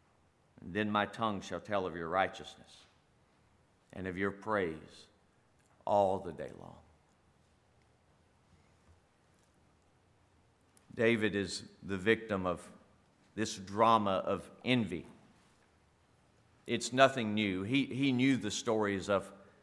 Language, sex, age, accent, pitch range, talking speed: English, male, 50-69, American, 100-125 Hz, 105 wpm